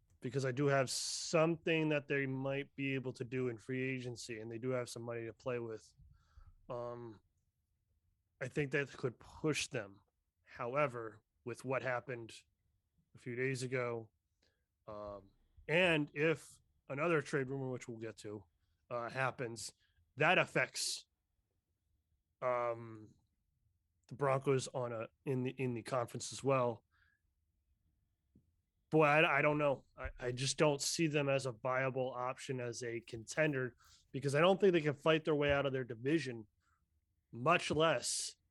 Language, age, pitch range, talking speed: English, 20-39, 100-140 Hz, 155 wpm